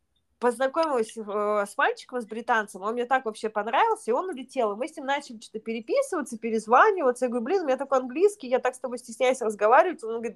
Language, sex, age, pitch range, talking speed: Russian, female, 20-39, 210-265 Hz, 215 wpm